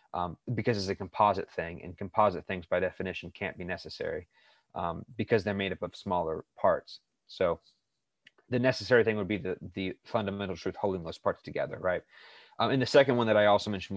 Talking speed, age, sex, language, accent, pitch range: 200 wpm, 30-49, male, English, American, 95-110 Hz